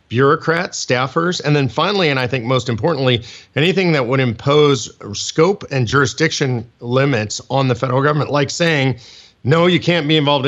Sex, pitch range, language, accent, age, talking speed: male, 125-155 Hz, English, American, 40-59, 165 wpm